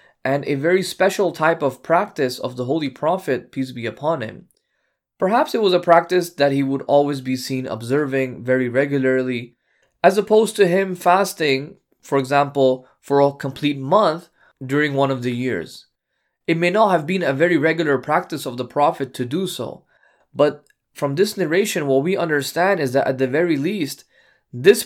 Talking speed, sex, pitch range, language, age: 180 wpm, male, 135-180 Hz, English, 20-39